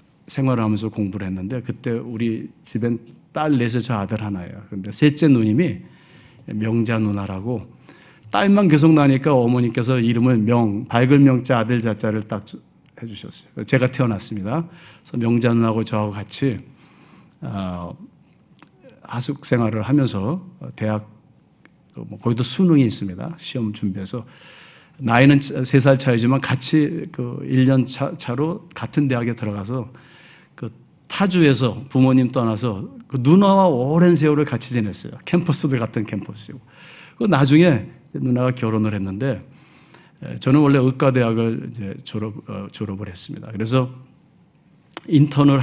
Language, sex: Korean, male